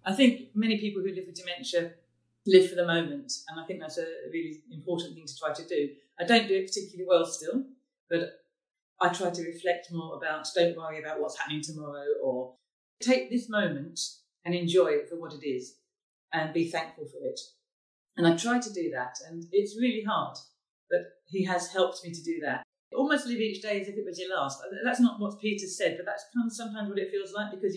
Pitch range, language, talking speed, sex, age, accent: 155-210 Hz, English, 220 wpm, female, 40-59, British